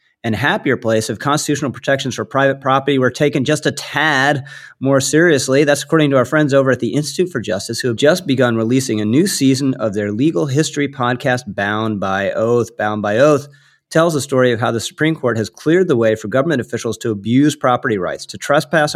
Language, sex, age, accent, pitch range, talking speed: English, male, 30-49, American, 110-140 Hz, 210 wpm